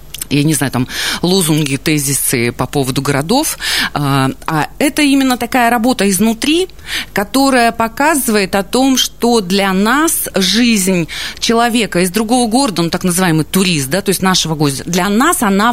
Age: 30-49